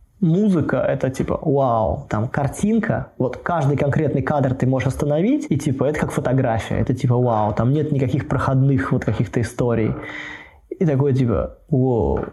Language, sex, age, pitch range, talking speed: Russian, male, 20-39, 125-155 Hz, 160 wpm